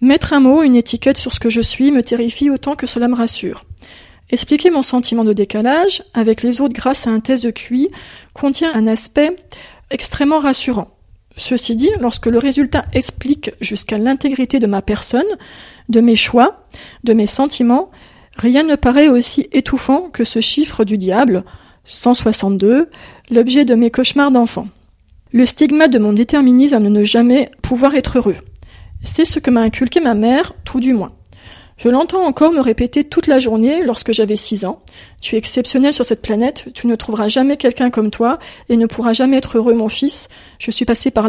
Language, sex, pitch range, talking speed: French, female, 220-275 Hz, 185 wpm